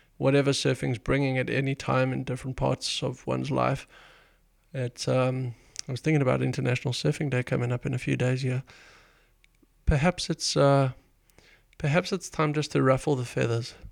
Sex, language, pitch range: male, English, 125-145 Hz